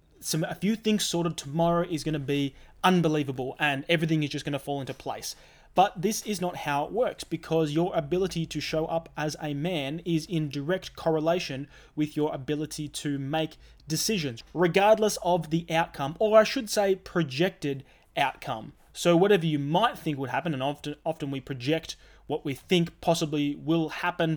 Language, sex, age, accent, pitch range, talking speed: English, male, 20-39, Australian, 145-175 Hz, 180 wpm